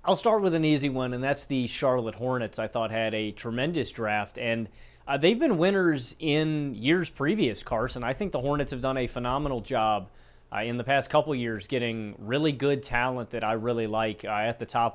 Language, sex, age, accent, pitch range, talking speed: English, male, 30-49, American, 115-140 Hz, 215 wpm